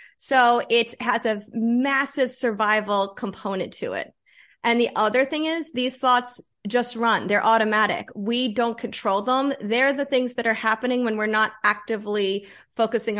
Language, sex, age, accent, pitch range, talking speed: English, female, 30-49, American, 210-255 Hz, 160 wpm